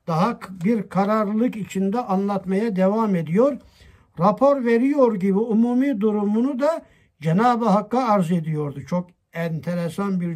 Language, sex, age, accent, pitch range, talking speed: Turkish, male, 60-79, native, 175-230 Hz, 115 wpm